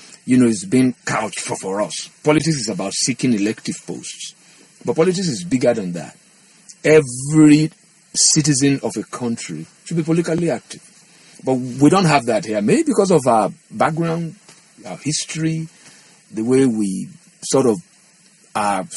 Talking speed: 150 wpm